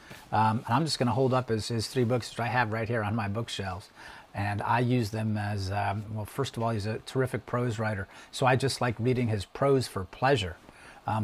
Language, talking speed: English, 240 wpm